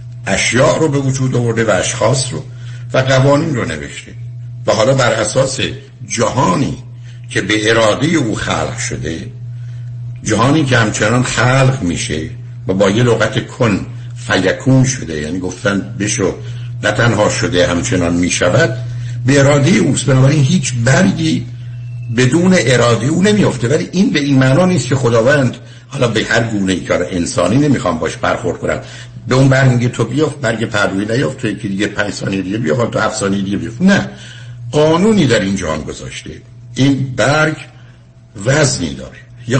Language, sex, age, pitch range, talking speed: Persian, male, 60-79, 115-130 Hz, 155 wpm